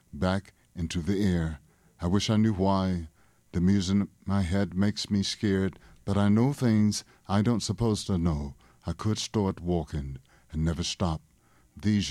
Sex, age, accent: male, 60-79, American